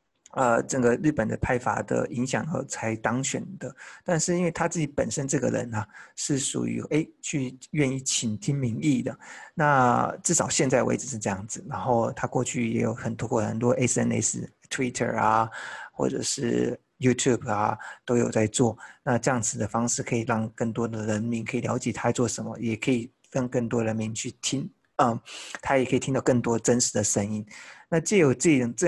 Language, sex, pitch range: Chinese, male, 115-135 Hz